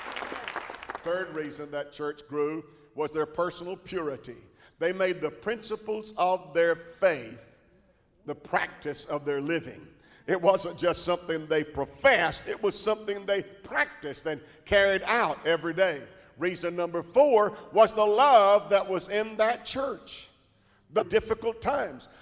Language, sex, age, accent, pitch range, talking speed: English, male, 50-69, American, 165-220 Hz, 140 wpm